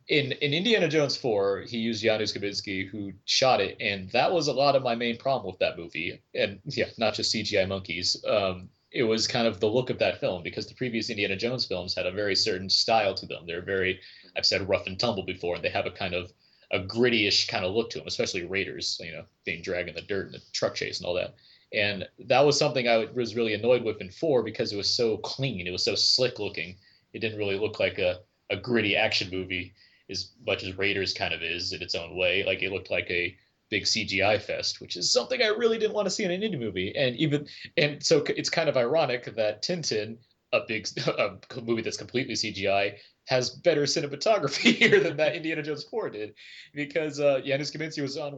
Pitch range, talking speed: 95-140 Hz, 230 wpm